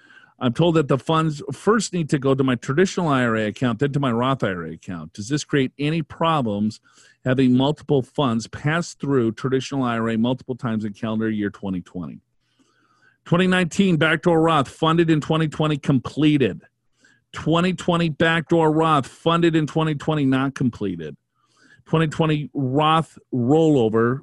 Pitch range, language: 110-155 Hz, English